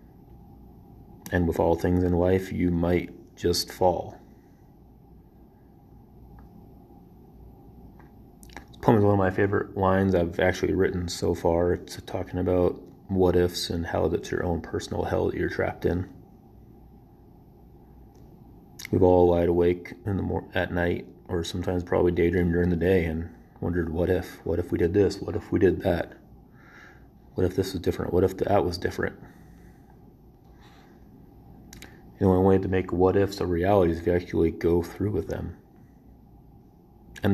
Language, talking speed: English, 155 wpm